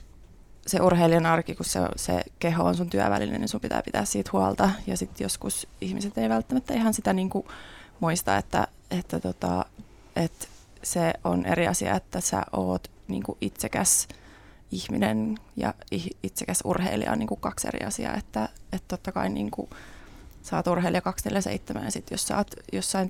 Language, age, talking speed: Finnish, 20-39, 165 wpm